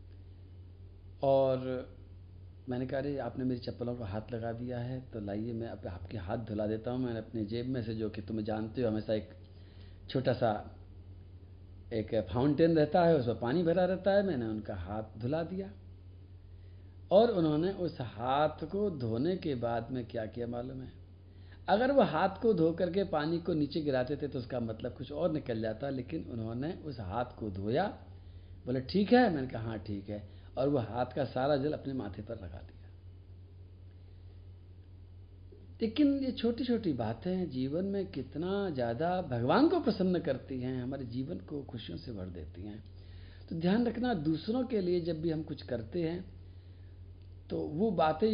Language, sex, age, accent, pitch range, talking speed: Hindi, male, 50-69, native, 95-150 Hz, 175 wpm